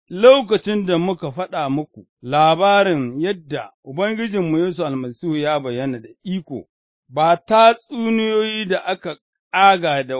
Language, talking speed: English, 125 wpm